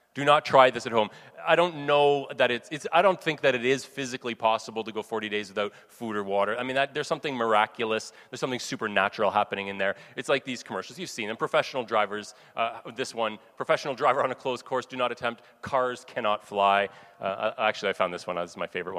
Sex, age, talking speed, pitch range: male, 30-49, 235 wpm, 105-145 Hz